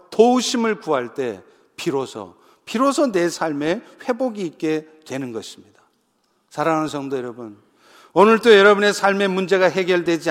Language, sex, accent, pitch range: Korean, male, native, 170-240 Hz